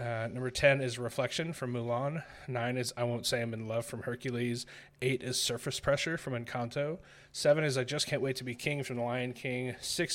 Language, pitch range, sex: English, 120-135 Hz, male